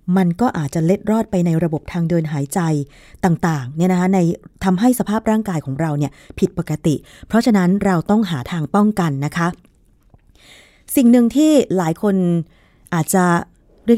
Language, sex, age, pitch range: Thai, female, 20-39, 170-220 Hz